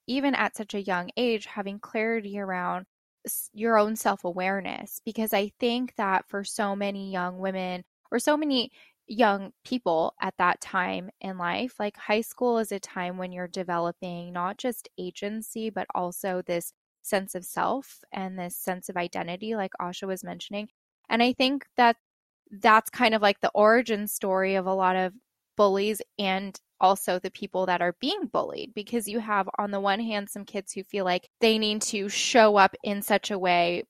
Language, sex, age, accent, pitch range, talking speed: English, female, 10-29, American, 185-220 Hz, 180 wpm